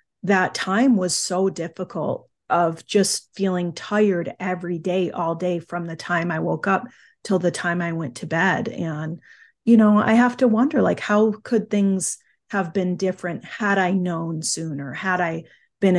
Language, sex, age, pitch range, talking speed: English, female, 30-49, 175-210 Hz, 175 wpm